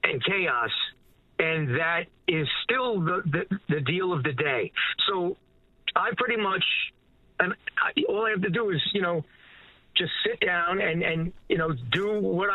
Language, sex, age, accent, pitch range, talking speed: English, male, 50-69, American, 170-215 Hz, 165 wpm